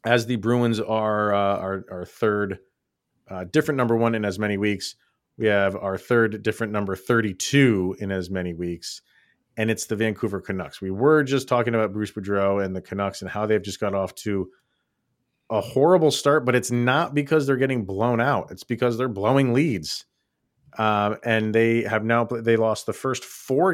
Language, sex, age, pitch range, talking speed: English, male, 30-49, 95-120 Hz, 190 wpm